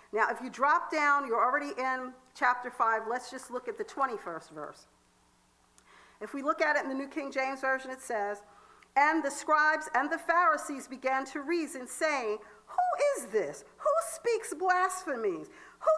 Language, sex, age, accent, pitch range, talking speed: English, female, 50-69, American, 235-330 Hz, 175 wpm